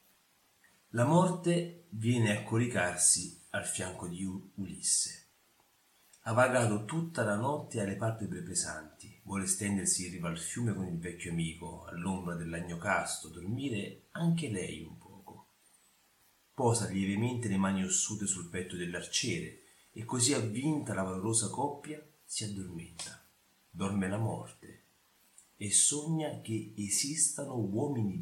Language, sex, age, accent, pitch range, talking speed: Italian, male, 40-59, native, 90-120 Hz, 125 wpm